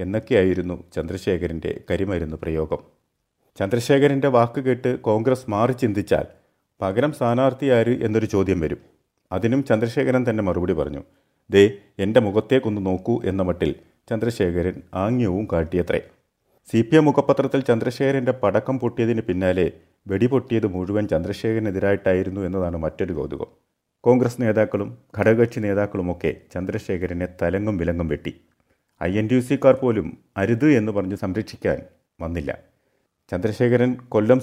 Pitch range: 95-120 Hz